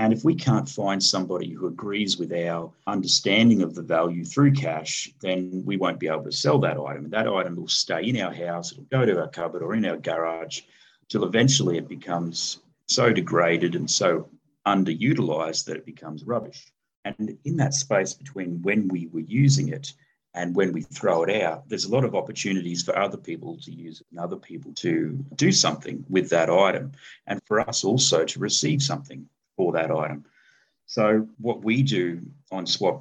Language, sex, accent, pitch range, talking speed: English, male, Australian, 85-110 Hz, 190 wpm